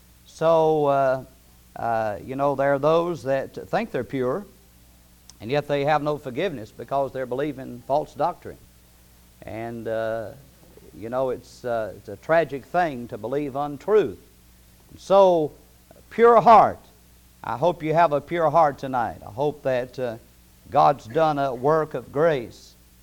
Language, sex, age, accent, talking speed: English, male, 50-69, American, 150 wpm